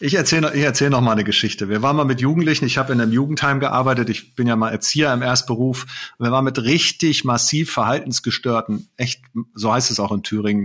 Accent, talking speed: German, 220 wpm